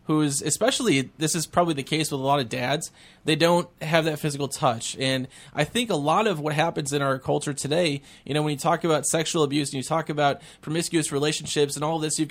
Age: 20-39